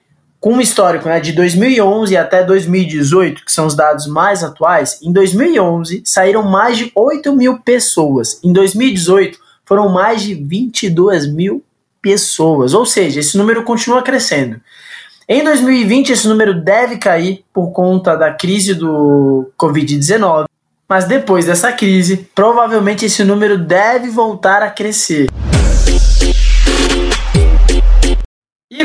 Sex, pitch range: male, 165-225 Hz